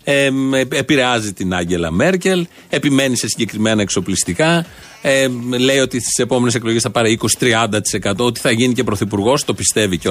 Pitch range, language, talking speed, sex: 115-160 Hz, Greek, 155 wpm, male